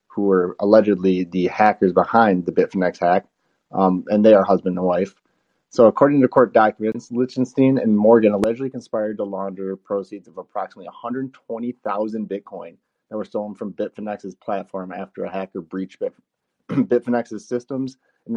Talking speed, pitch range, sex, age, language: 150 wpm, 100-120 Hz, male, 30-49, English